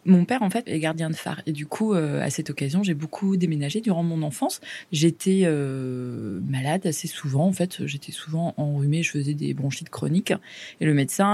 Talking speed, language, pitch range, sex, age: 205 wpm, French, 145-190 Hz, female, 20-39